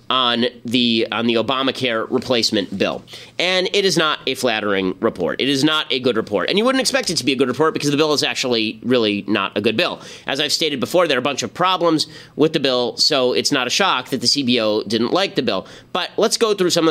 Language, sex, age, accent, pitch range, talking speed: English, male, 30-49, American, 125-155 Hz, 250 wpm